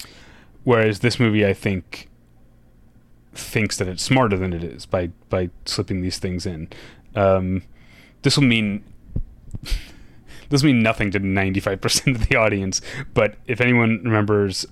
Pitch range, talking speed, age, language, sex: 95-115 Hz, 150 wpm, 30-49, English, male